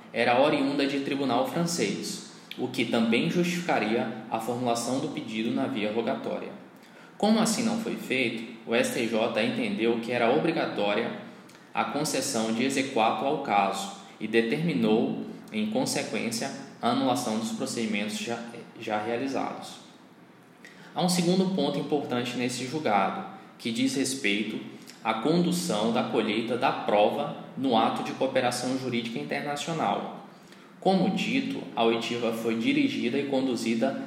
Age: 20-39